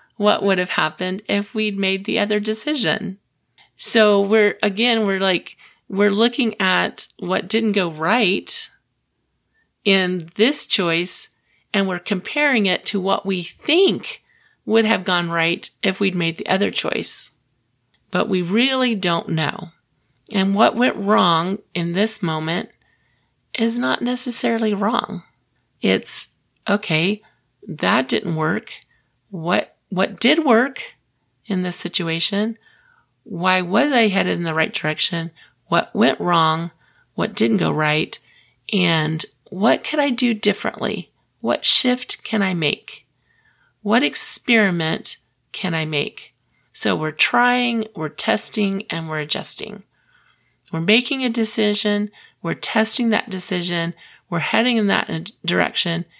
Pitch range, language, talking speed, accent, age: 170-225 Hz, English, 130 wpm, American, 40-59